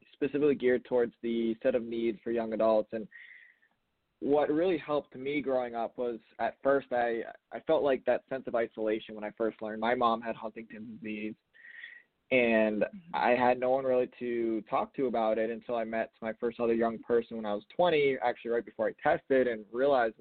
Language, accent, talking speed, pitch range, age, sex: English, American, 200 wpm, 110-130 Hz, 20-39, male